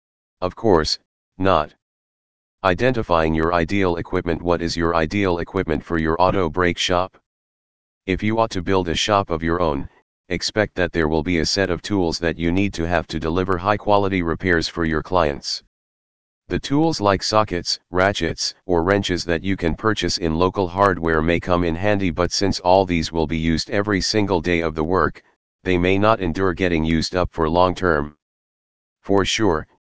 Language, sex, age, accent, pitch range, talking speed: English, male, 40-59, American, 80-100 Hz, 185 wpm